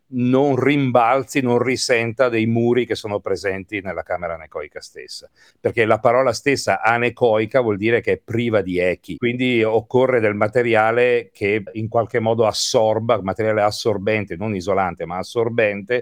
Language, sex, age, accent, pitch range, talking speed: Italian, male, 40-59, native, 100-125 Hz, 150 wpm